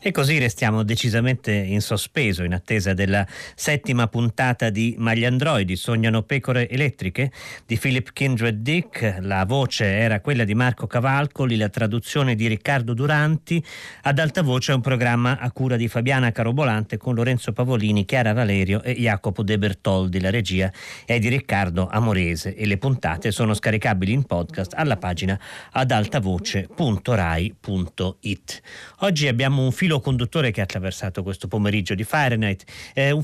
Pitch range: 105-135 Hz